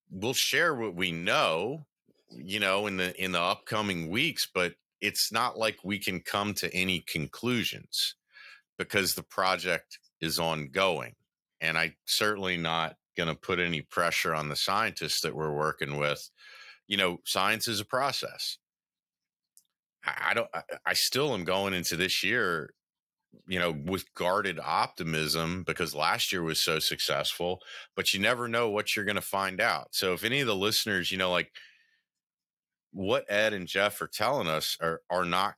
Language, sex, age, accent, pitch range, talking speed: English, male, 40-59, American, 80-100 Hz, 165 wpm